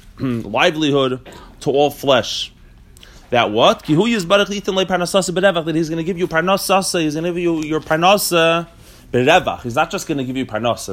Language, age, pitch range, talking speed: English, 30-49, 130-190 Hz, 155 wpm